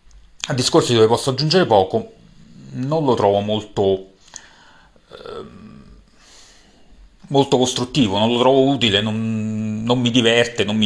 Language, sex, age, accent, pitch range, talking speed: Italian, male, 40-59, native, 105-140 Hz, 120 wpm